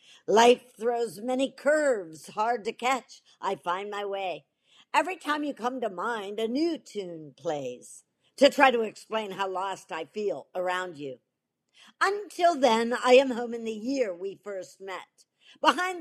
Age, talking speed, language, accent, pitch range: 60-79, 160 wpm, English, American, 190-265 Hz